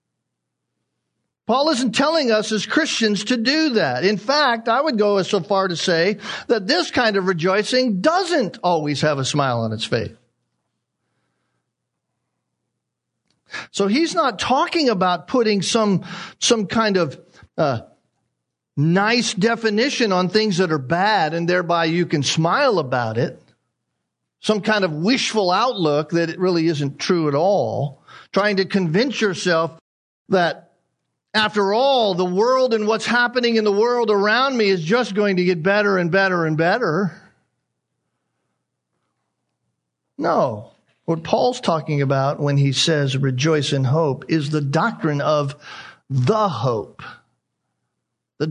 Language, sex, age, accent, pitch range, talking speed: English, male, 50-69, American, 150-215 Hz, 140 wpm